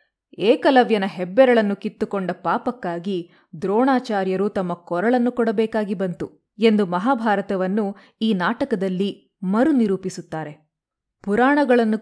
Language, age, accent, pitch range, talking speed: Kannada, 20-39, native, 180-225 Hz, 75 wpm